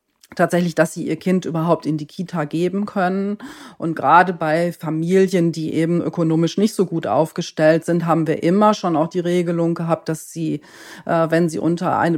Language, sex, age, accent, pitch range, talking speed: German, female, 40-59, German, 160-190 Hz, 180 wpm